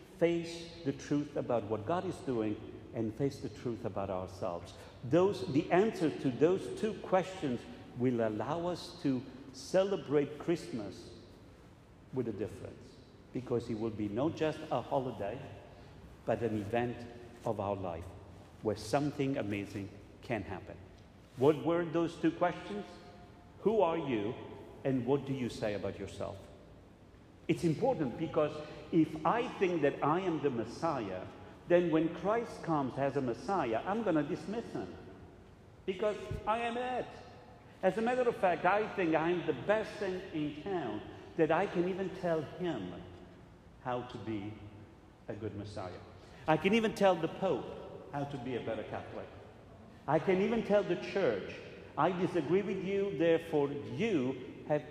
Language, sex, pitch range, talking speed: English, male, 110-170 Hz, 155 wpm